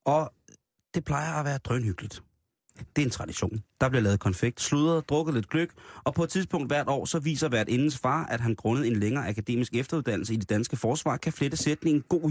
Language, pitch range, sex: Danish, 105-140 Hz, male